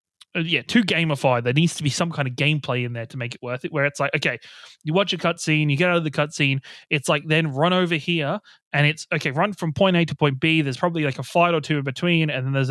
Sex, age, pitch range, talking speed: male, 20-39, 135-170 Hz, 285 wpm